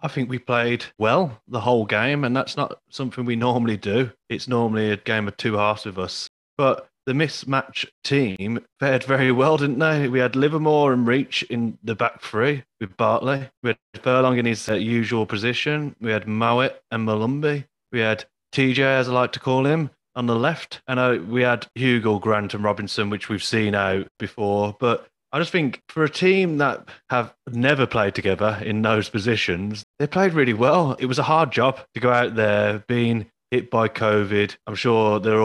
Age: 30-49